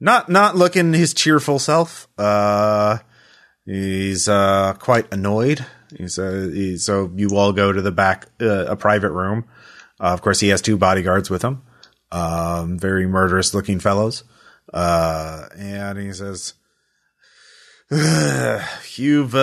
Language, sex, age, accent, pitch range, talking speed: English, male, 30-49, American, 95-130 Hz, 135 wpm